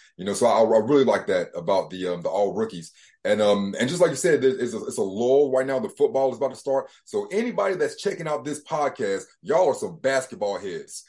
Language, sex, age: English, male, 30-49